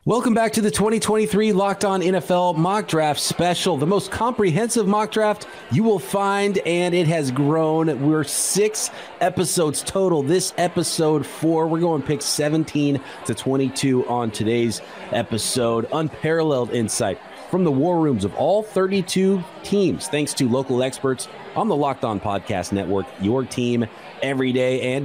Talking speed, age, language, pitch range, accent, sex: 155 wpm, 30-49, English, 125-170 Hz, American, male